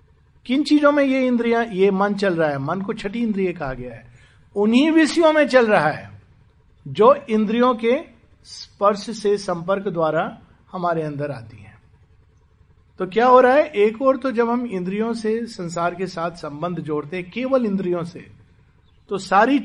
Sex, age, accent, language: male, 50-69, native, Hindi